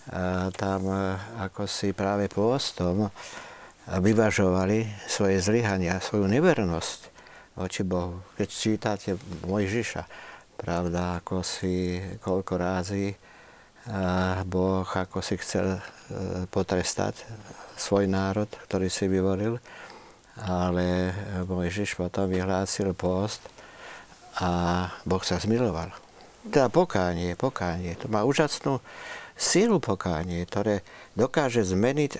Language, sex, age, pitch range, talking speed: Slovak, male, 50-69, 90-110 Hz, 95 wpm